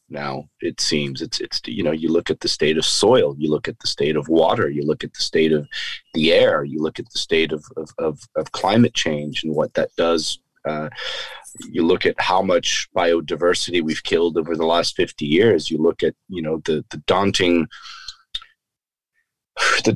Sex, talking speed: male, 200 wpm